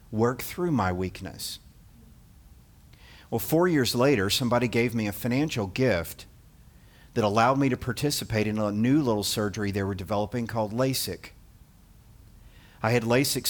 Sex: male